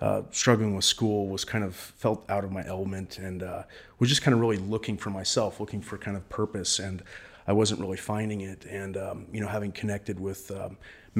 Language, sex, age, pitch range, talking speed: English, male, 30-49, 95-105 Hz, 220 wpm